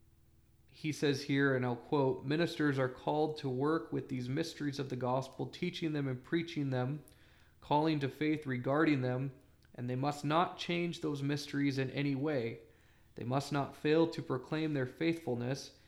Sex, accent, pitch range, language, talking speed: male, American, 125-145 Hz, English, 170 wpm